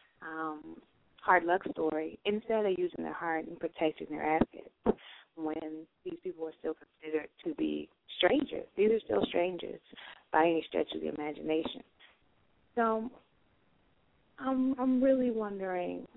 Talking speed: 135 wpm